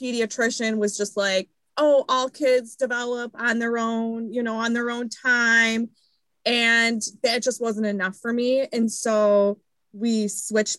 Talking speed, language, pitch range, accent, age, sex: 155 wpm, English, 205-245 Hz, American, 20-39, female